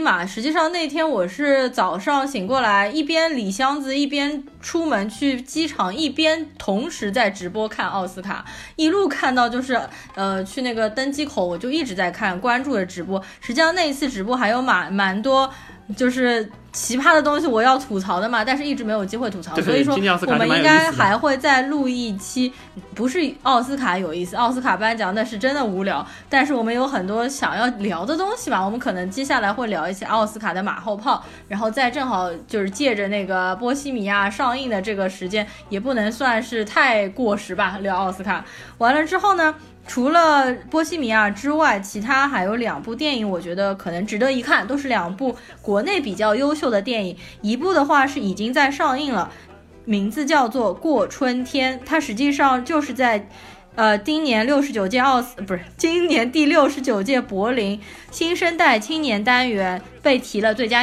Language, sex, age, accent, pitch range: Chinese, female, 20-39, native, 205-285 Hz